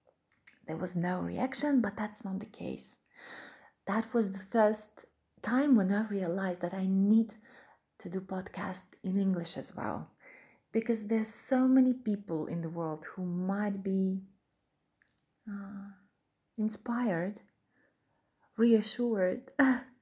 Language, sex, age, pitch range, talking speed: English, female, 30-49, 185-230 Hz, 125 wpm